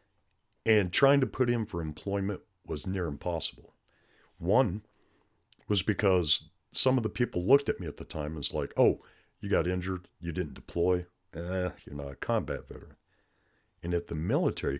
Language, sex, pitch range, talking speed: English, male, 80-110 Hz, 175 wpm